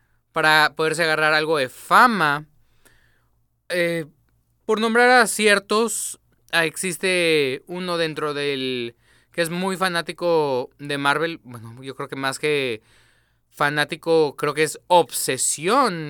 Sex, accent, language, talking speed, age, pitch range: male, Mexican, Spanish, 120 wpm, 20-39, 145-185 Hz